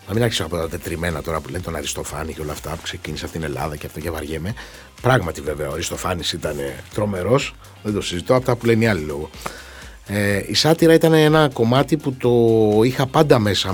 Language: Greek